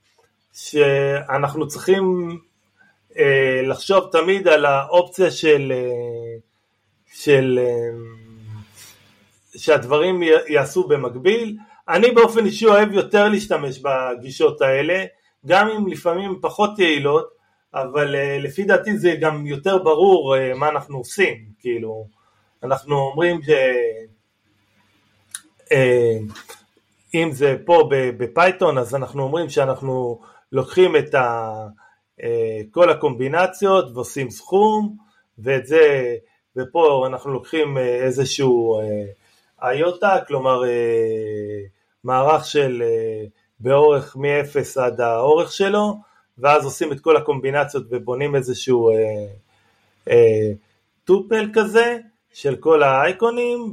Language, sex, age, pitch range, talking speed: Hebrew, male, 30-49, 120-180 Hz, 95 wpm